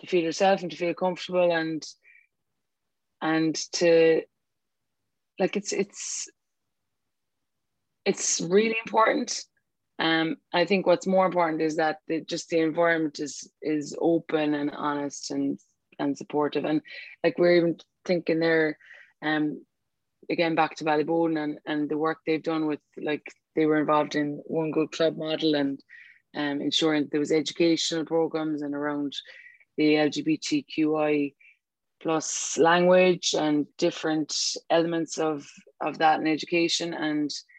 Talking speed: 135 wpm